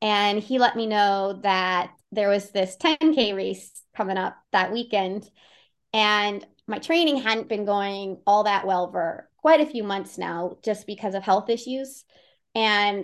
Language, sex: English, female